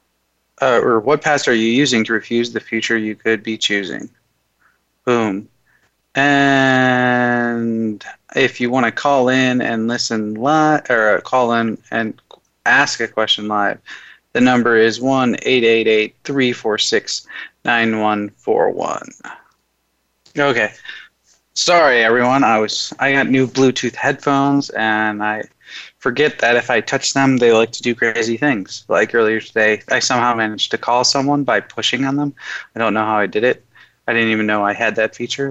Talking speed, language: 170 wpm, English